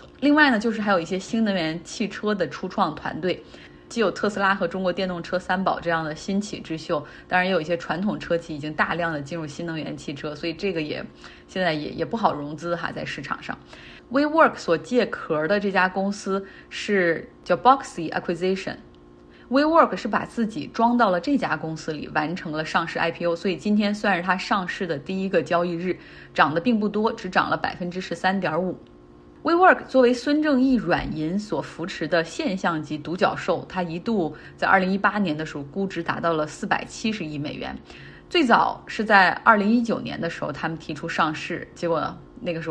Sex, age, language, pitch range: female, 20-39, Chinese, 165-210 Hz